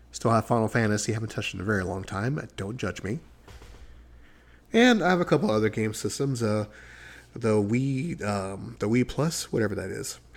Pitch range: 100-140 Hz